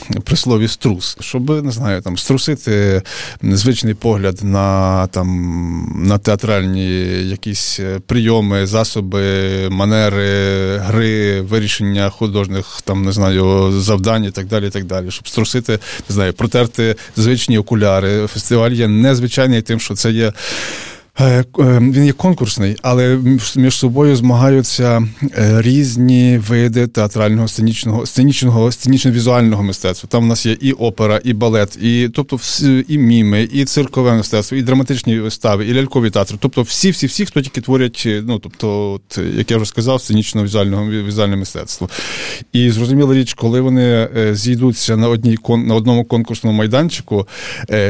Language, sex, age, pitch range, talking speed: Ukrainian, male, 20-39, 100-125 Hz, 140 wpm